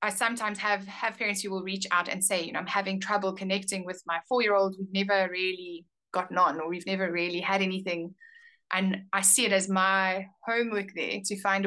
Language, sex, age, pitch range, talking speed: English, female, 20-39, 180-205 Hz, 215 wpm